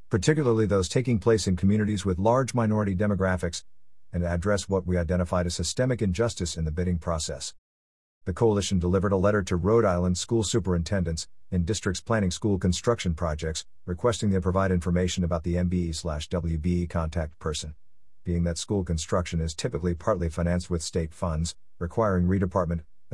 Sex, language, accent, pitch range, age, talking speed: male, English, American, 85-105 Hz, 50-69, 160 wpm